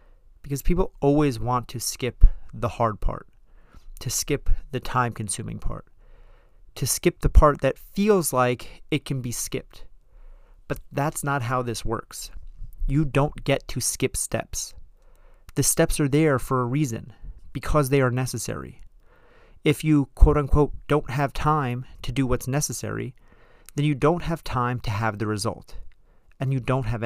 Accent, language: American, English